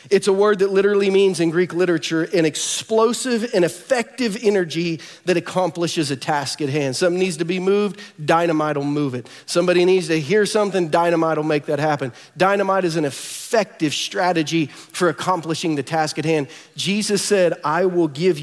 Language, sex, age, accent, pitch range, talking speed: English, male, 40-59, American, 135-175 Hz, 180 wpm